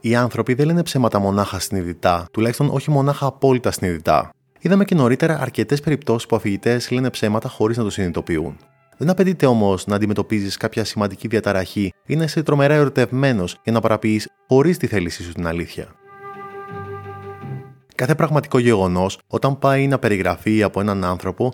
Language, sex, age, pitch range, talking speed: Greek, male, 20-39, 100-140 Hz, 160 wpm